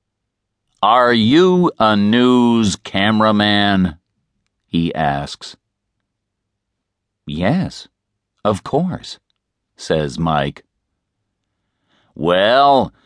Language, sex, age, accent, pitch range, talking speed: English, male, 50-69, American, 100-120 Hz, 60 wpm